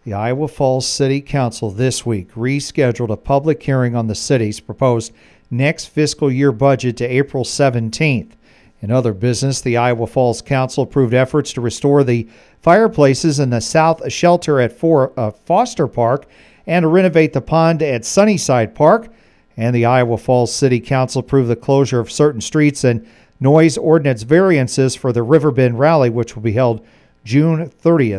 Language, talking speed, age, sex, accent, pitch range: English, 165 wpm, 50-69, male, American, 120-145 Hz